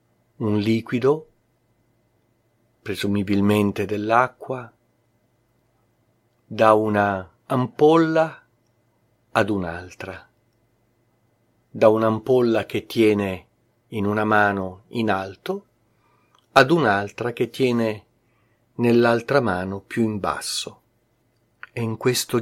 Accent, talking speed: native, 80 wpm